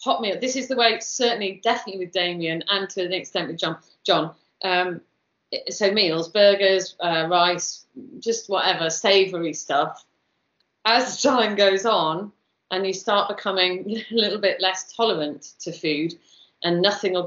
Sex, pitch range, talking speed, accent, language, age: female, 170-215 Hz, 155 wpm, British, English, 30-49